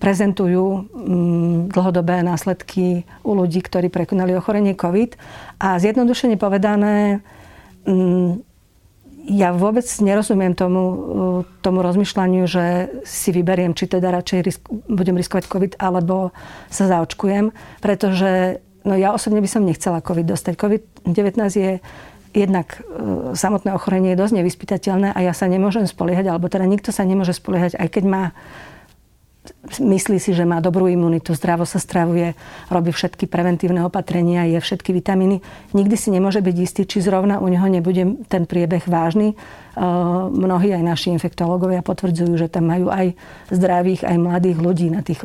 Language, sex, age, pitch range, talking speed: Slovak, female, 50-69, 175-200 Hz, 140 wpm